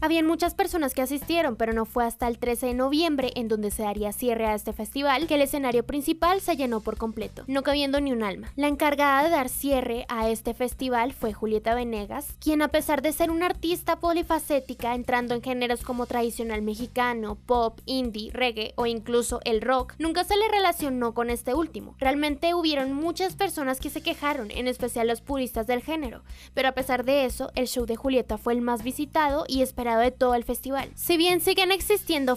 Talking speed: 200 wpm